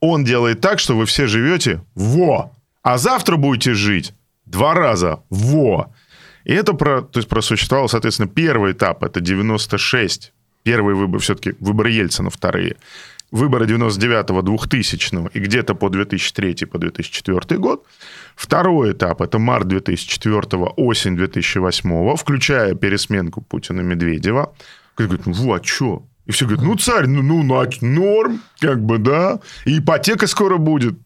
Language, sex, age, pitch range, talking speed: Russian, male, 20-39, 100-140 Hz, 135 wpm